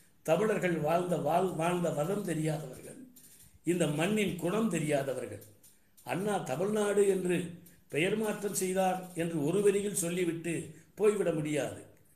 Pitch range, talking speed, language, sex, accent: 160-205 Hz, 110 wpm, Tamil, male, native